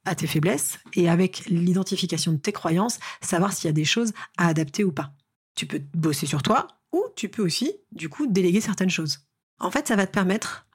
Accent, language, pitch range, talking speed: French, French, 170-205 Hz, 220 wpm